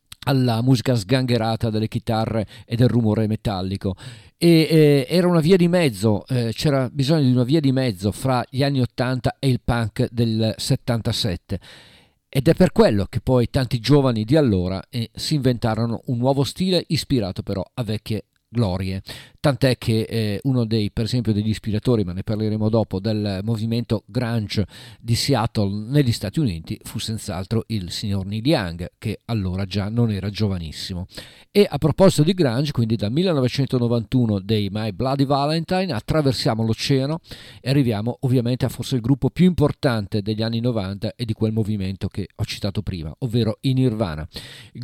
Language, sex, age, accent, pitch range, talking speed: Italian, male, 50-69, native, 110-135 Hz, 165 wpm